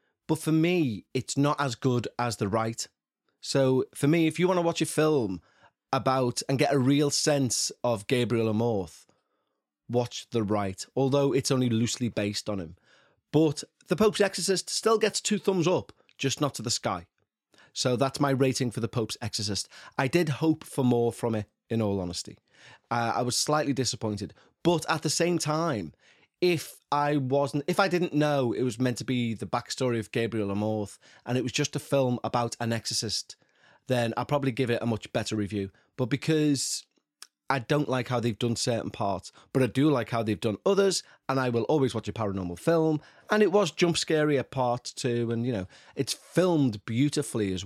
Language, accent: English, British